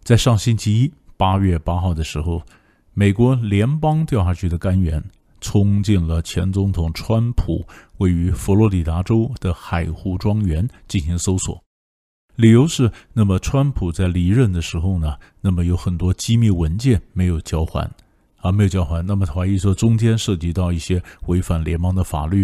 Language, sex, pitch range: Chinese, male, 85-105 Hz